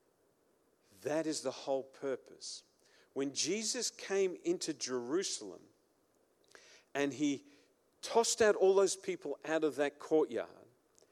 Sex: male